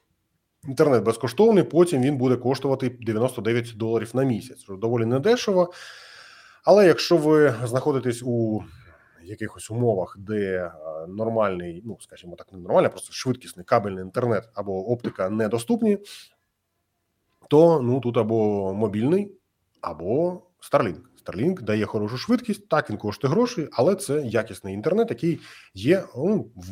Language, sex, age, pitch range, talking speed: Ukrainian, male, 30-49, 105-155 Hz, 125 wpm